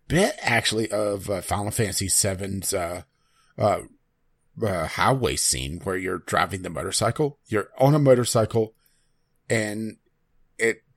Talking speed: 125 wpm